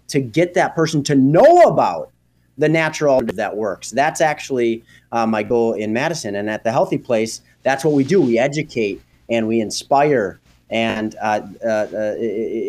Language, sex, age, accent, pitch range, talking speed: English, male, 30-49, American, 110-145 Hz, 165 wpm